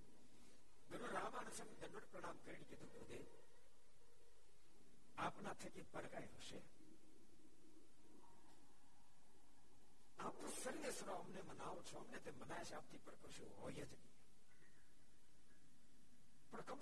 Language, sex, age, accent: Gujarati, male, 60-79, native